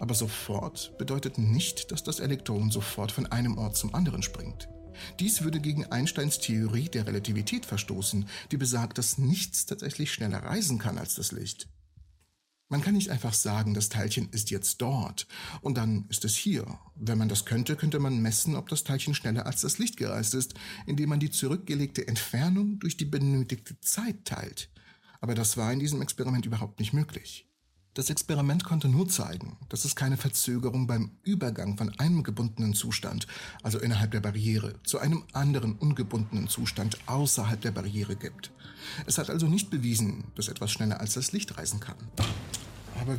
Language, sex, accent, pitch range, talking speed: German, male, German, 105-145 Hz, 175 wpm